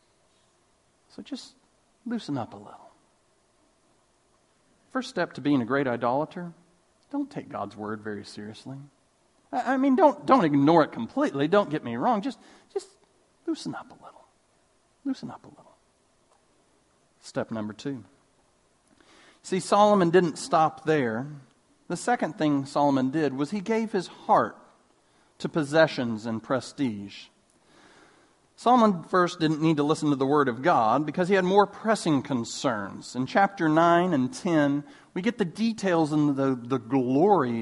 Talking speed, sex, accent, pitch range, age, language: 145 wpm, male, American, 140-205 Hz, 40-59, English